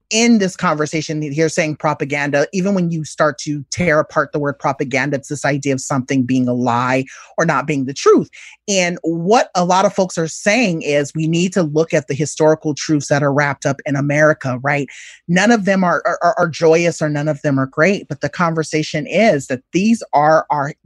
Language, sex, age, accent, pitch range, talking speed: English, male, 30-49, American, 145-175 Hz, 215 wpm